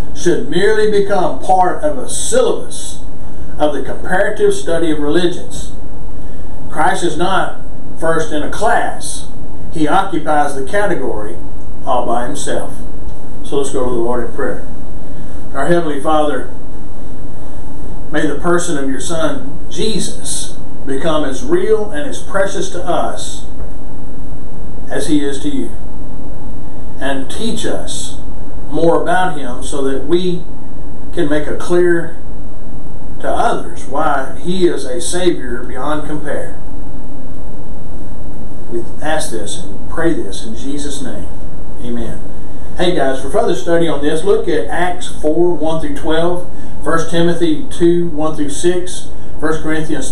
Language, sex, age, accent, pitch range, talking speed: English, male, 50-69, American, 140-175 Hz, 130 wpm